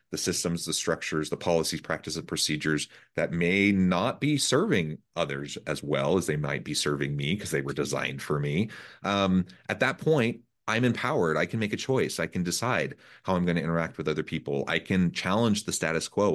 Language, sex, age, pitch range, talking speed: English, male, 30-49, 80-105 Hz, 210 wpm